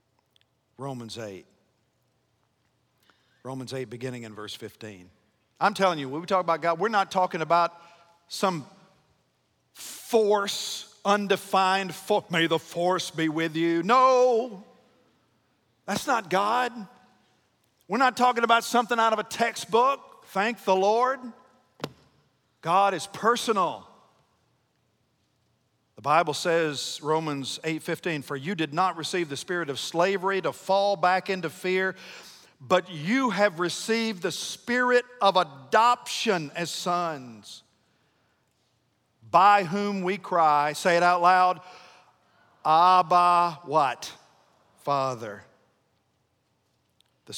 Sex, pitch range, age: male, 145-200 Hz, 50-69